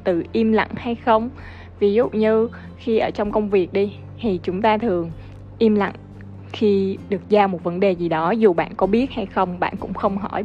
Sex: female